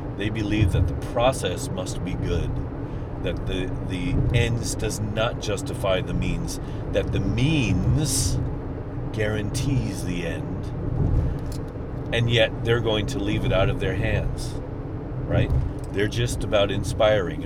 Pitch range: 90-115 Hz